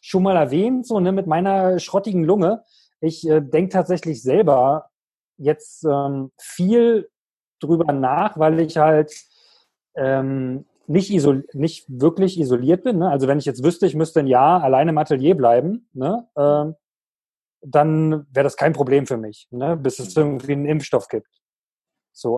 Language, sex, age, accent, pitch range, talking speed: German, male, 30-49, German, 145-180 Hz, 145 wpm